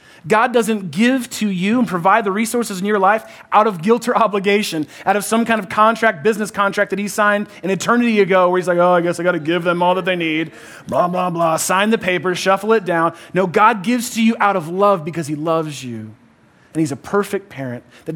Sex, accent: male, American